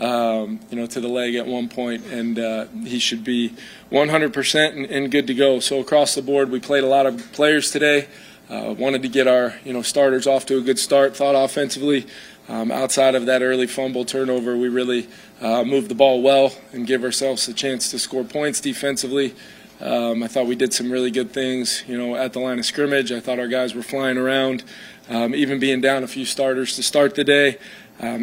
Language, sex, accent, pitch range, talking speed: English, male, American, 125-135 Hz, 220 wpm